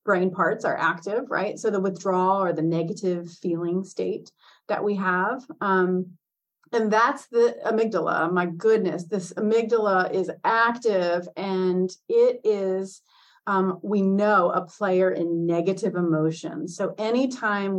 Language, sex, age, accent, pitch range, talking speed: English, female, 30-49, American, 180-230 Hz, 135 wpm